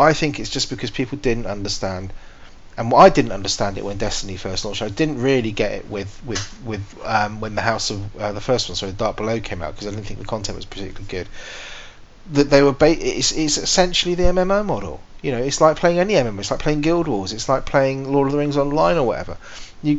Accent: British